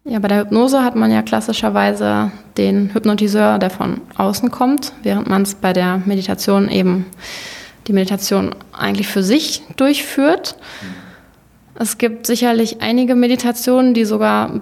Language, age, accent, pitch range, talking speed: German, 20-39, German, 200-230 Hz, 145 wpm